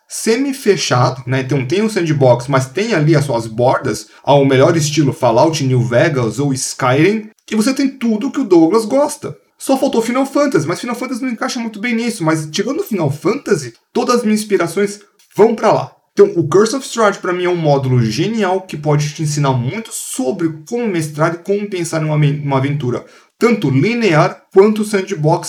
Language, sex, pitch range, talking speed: Portuguese, male, 140-205 Hz, 195 wpm